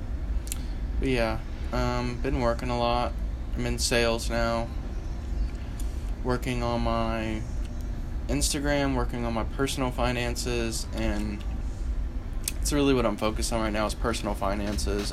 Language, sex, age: English, male, 20-39